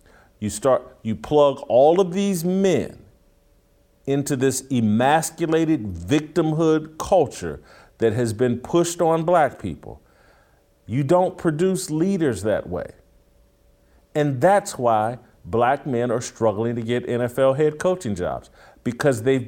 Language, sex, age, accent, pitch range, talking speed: English, male, 50-69, American, 105-150 Hz, 125 wpm